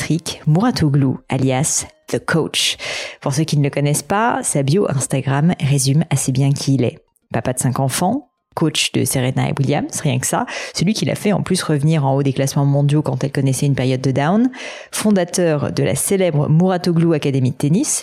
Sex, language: female, French